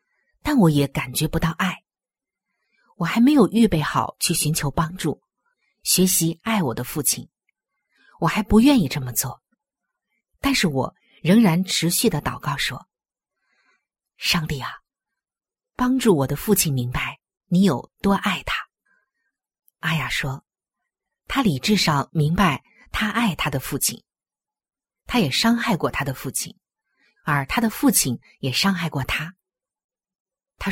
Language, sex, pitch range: Chinese, female, 150-220 Hz